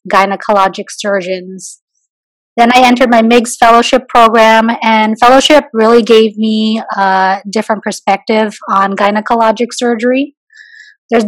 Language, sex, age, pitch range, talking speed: English, female, 20-39, 205-245 Hz, 110 wpm